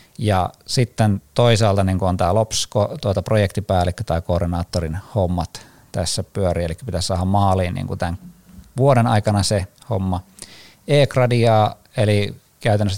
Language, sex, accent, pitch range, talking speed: Finnish, male, native, 90-110 Hz, 125 wpm